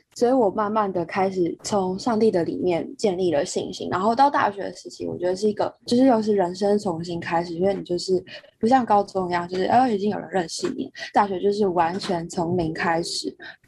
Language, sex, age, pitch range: Chinese, female, 20-39, 180-245 Hz